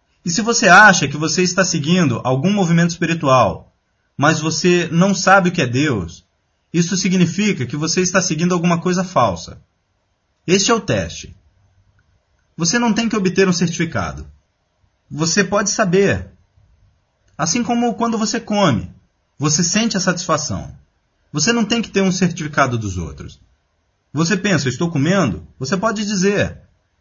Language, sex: Portuguese, male